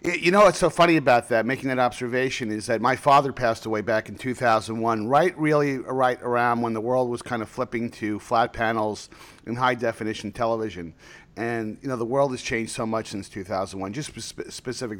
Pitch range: 100-130 Hz